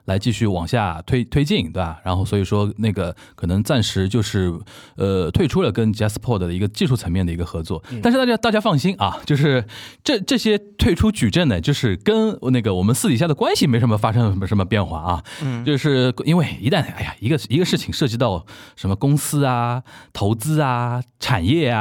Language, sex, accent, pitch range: Chinese, male, native, 100-145 Hz